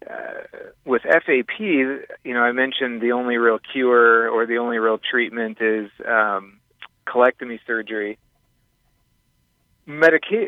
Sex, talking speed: male, 120 wpm